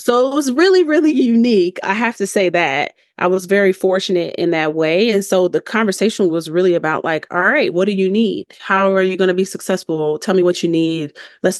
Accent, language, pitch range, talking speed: American, English, 180-230 Hz, 235 wpm